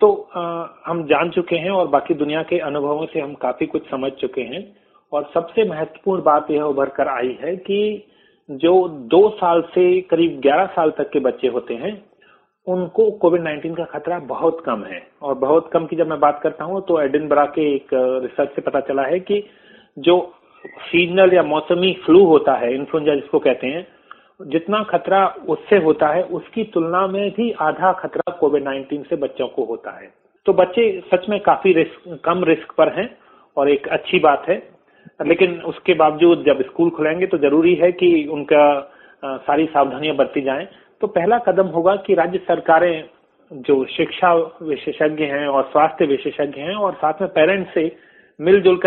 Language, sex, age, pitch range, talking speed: Hindi, male, 40-59, 150-185 Hz, 180 wpm